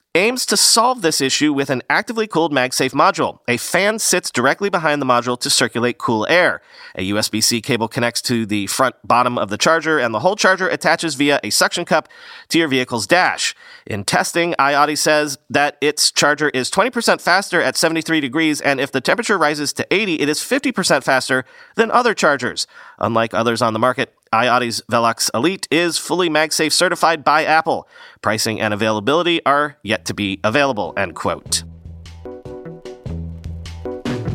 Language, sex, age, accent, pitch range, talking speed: English, male, 40-59, American, 120-170 Hz, 170 wpm